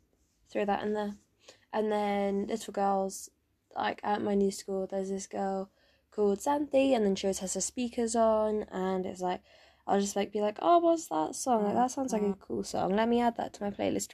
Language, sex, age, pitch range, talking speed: English, female, 10-29, 185-215 Hz, 220 wpm